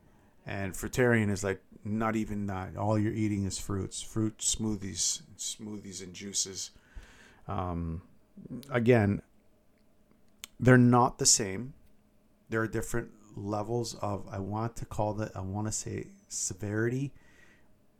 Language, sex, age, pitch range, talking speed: English, male, 50-69, 95-115 Hz, 125 wpm